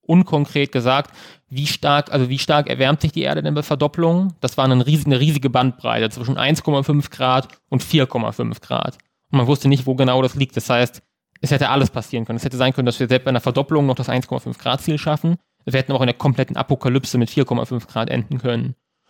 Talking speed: 220 wpm